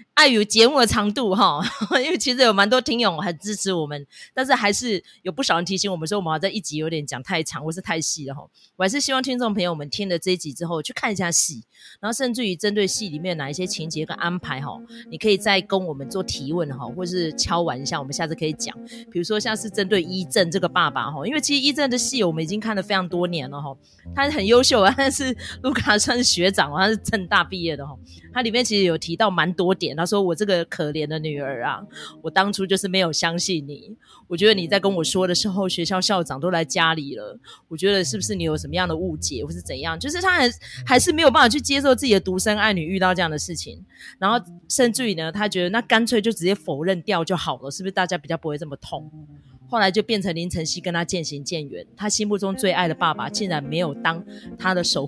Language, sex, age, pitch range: Chinese, female, 30-49, 165-215 Hz